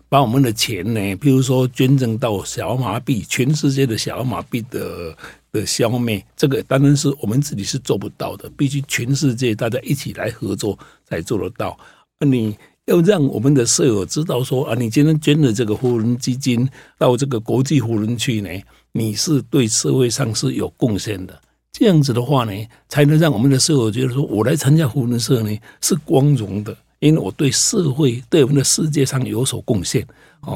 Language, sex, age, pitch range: Chinese, male, 60-79, 115-145 Hz